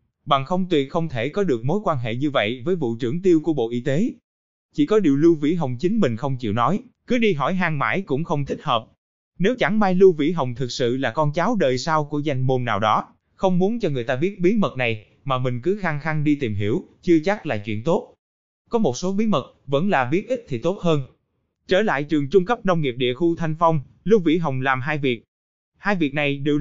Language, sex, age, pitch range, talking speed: Vietnamese, male, 20-39, 130-185 Hz, 255 wpm